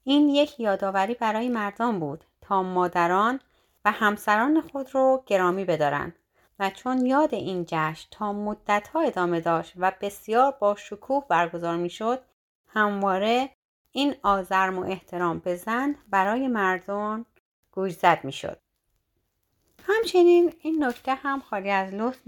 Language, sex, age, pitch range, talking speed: Persian, female, 30-49, 185-265 Hz, 125 wpm